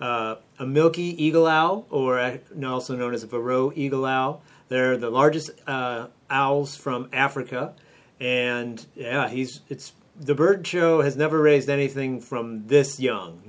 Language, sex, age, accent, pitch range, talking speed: English, male, 40-59, American, 120-140 Hz, 150 wpm